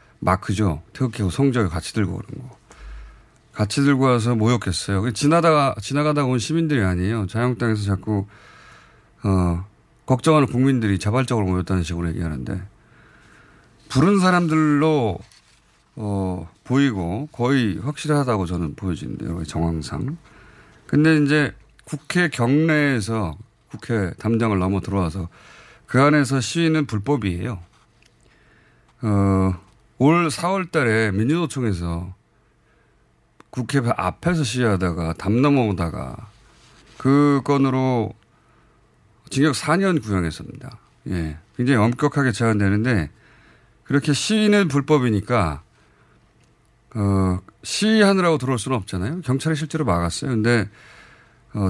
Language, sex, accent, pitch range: Korean, male, native, 100-145 Hz